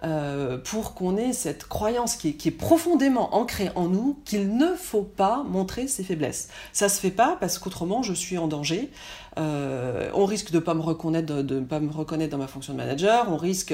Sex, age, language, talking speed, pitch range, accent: female, 40-59, French, 210 wpm, 170-255 Hz, French